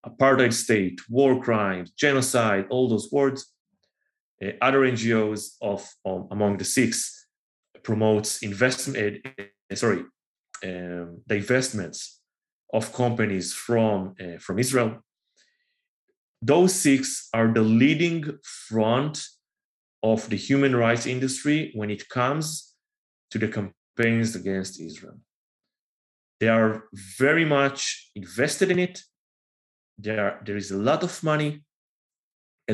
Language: English